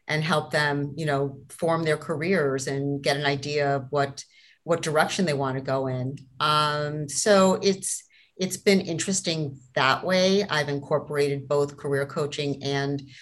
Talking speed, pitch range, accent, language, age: 160 wpm, 140-165 Hz, American, English, 50-69